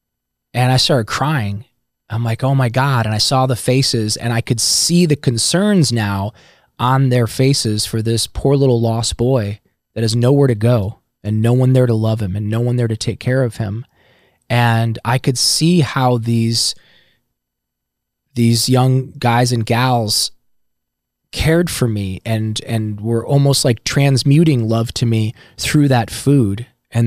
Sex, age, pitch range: male, 20-39, 110-130 Hz